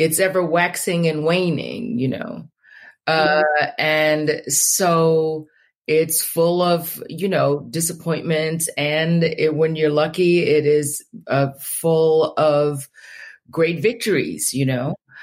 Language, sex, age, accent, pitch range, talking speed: English, female, 40-59, American, 145-170 Hz, 120 wpm